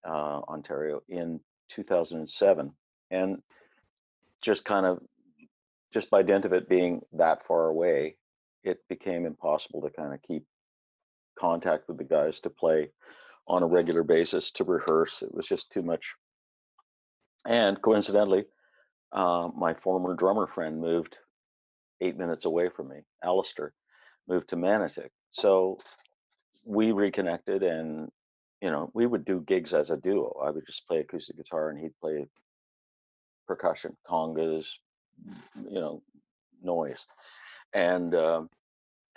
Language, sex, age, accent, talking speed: English, male, 50-69, American, 130 wpm